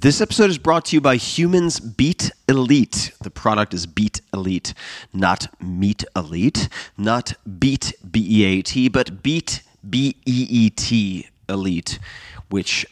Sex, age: male, 30-49